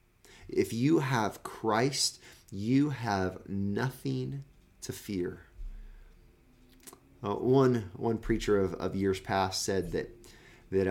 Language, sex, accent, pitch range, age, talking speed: English, male, American, 95-130 Hz, 30-49, 110 wpm